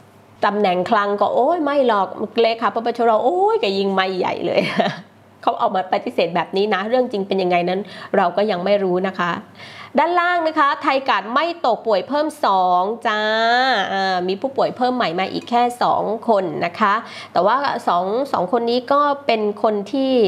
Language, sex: Thai, female